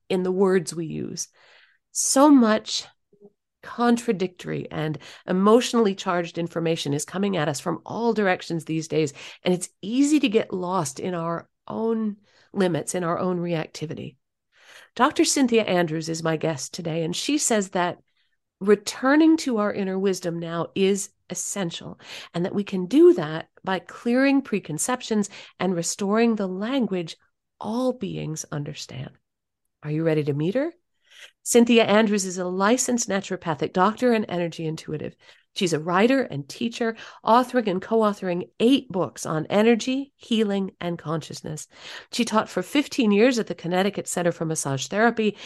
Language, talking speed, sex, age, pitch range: English, 150 wpm, female, 50-69, 170-225 Hz